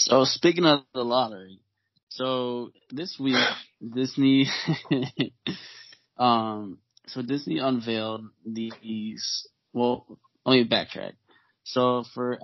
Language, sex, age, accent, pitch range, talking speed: English, male, 20-39, American, 110-125 Hz, 95 wpm